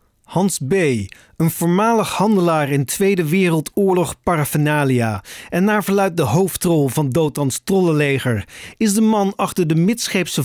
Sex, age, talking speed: male, 40-59, 130 wpm